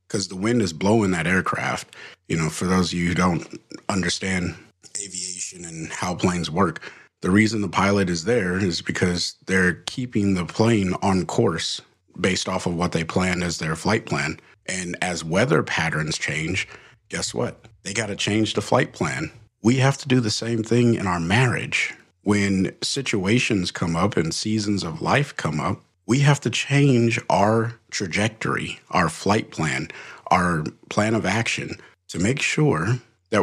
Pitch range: 90-110 Hz